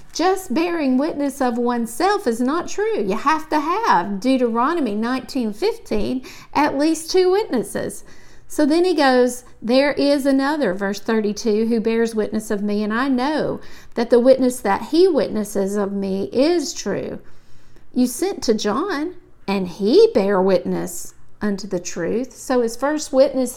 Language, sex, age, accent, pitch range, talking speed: English, female, 50-69, American, 210-280 Hz, 155 wpm